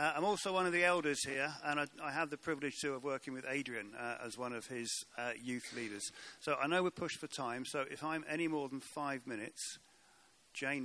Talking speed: 240 wpm